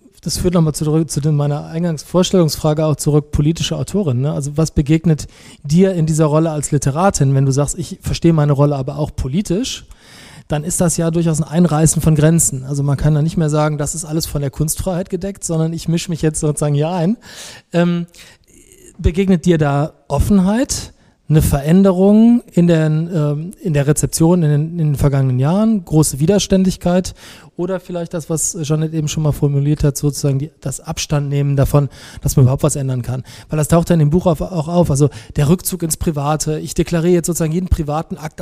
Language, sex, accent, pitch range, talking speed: German, male, German, 145-175 Hz, 185 wpm